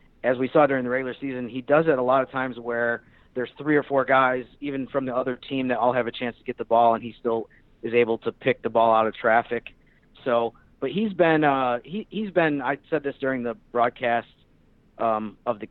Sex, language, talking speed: male, English, 240 wpm